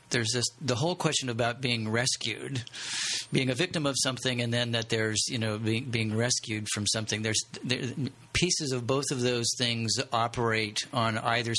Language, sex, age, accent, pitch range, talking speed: English, male, 50-69, American, 115-130 Hz, 180 wpm